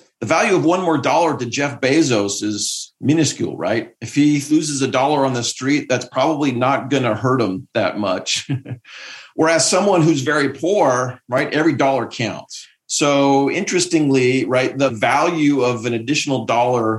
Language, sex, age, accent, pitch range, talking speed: English, male, 40-59, American, 115-140 Hz, 165 wpm